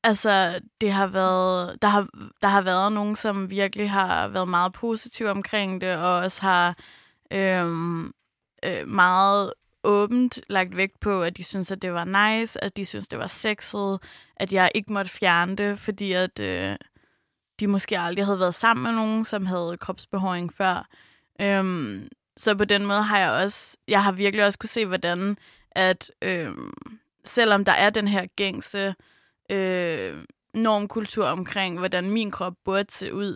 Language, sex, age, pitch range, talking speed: Danish, female, 20-39, 185-205 Hz, 170 wpm